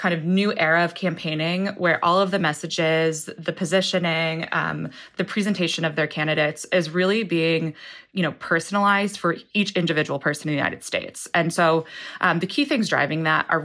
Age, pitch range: 20-39, 160-190 Hz